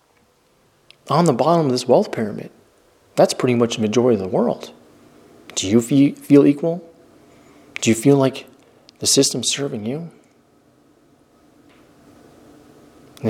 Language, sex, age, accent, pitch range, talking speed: English, male, 40-59, American, 115-145 Hz, 130 wpm